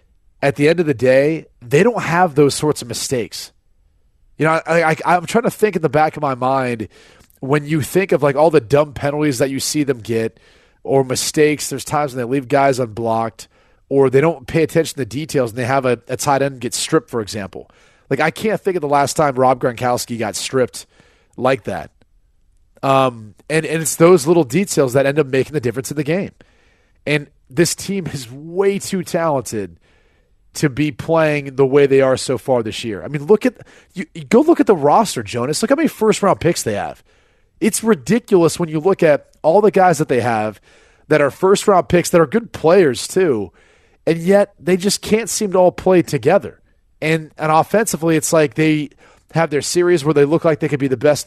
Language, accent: English, American